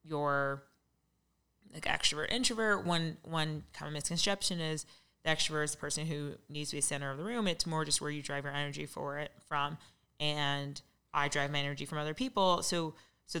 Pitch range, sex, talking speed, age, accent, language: 145-160 Hz, female, 195 wpm, 20-39, American, English